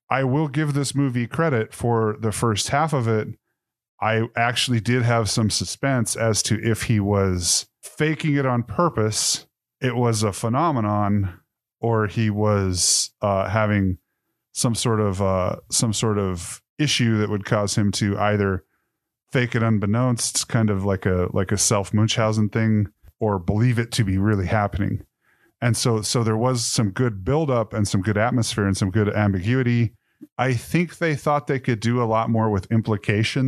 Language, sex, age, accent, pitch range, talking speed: English, male, 30-49, American, 105-120 Hz, 170 wpm